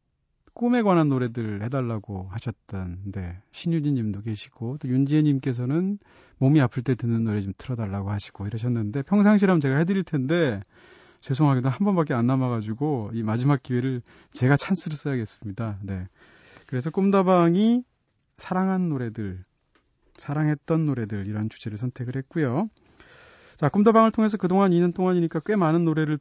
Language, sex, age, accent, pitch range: Korean, male, 30-49, native, 120-165 Hz